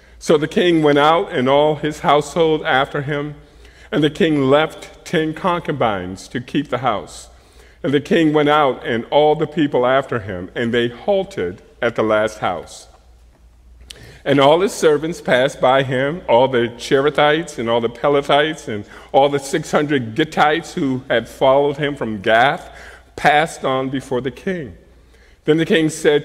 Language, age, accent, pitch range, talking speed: English, 50-69, American, 120-165 Hz, 165 wpm